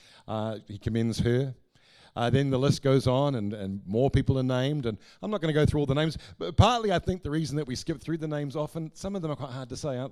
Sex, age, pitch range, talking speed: male, 50-69, 110-140 Hz, 285 wpm